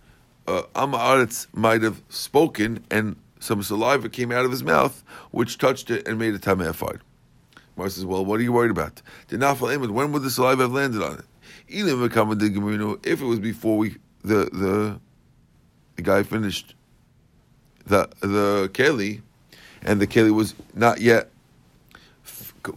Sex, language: male, English